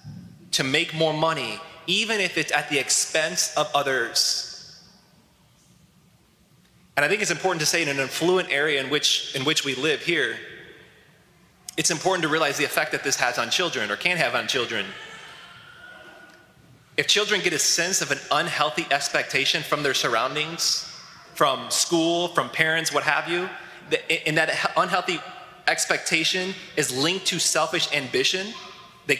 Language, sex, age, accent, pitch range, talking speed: English, male, 20-39, American, 150-185 Hz, 155 wpm